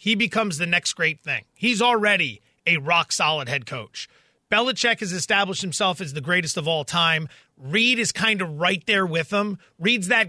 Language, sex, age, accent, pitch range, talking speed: English, male, 30-49, American, 165-215 Hz, 190 wpm